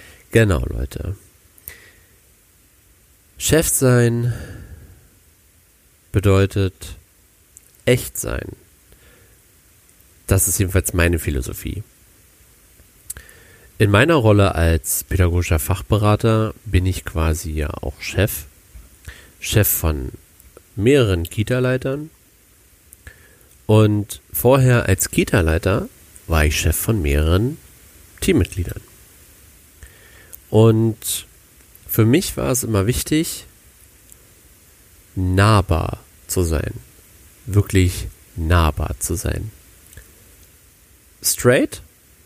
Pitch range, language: 85-105 Hz, German